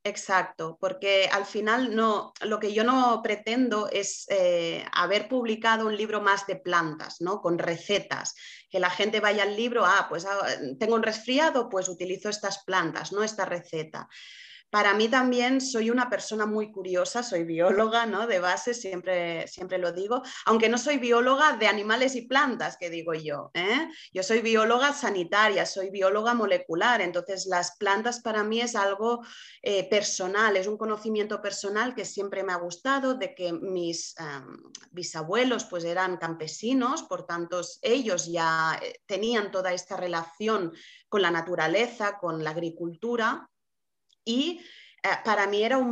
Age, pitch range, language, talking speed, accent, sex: 30-49, 180-230 Hz, Spanish, 160 wpm, Spanish, female